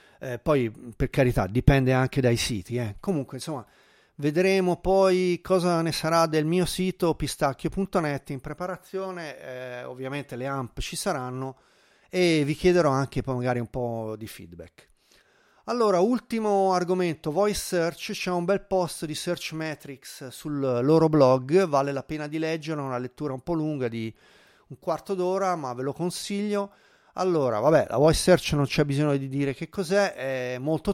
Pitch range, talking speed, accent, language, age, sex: 130-175 Hz, 165 wpm, native, Italian, 30-49, male